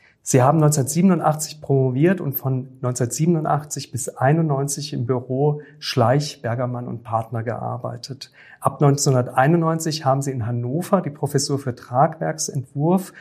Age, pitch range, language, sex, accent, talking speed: 40-59, 125-150 Hz, German, male, German, 120 wpm